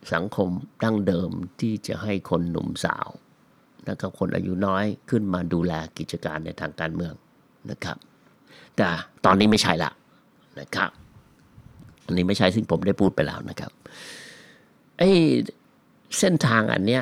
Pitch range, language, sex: 90-110 Hz, Thai, male